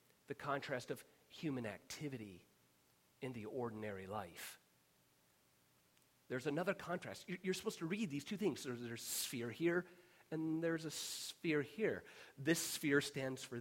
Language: English